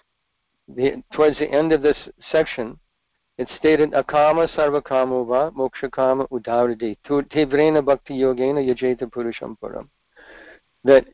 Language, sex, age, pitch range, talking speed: English, male, 60-79, 135-160 Hz, 85 wpm